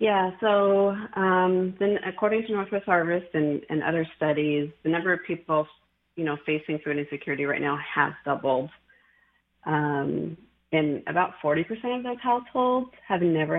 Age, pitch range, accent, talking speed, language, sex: 30-49, 150-190 Hz, American, 150 wpm, English, female